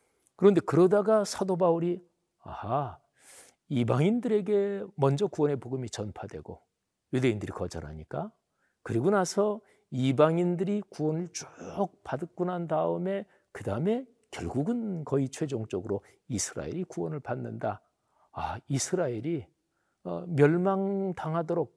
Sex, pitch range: male, 125-180 Hz